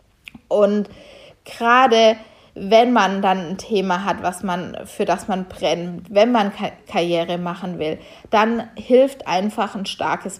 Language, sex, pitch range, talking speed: German, female, 200-240 Hz, 125 wpm